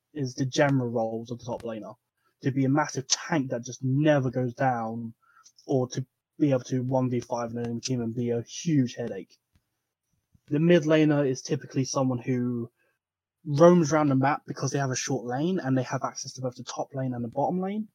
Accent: British